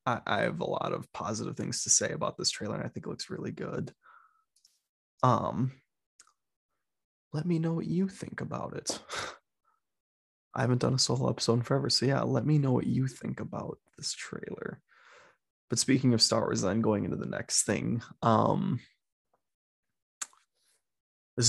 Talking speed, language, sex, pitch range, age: 170 wpm, English, male, 105-125 Hz, 20-39